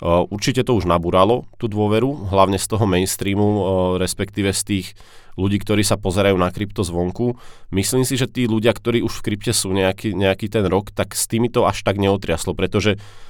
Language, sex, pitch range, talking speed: Czech, male, 90-105 Hz, 195 wpm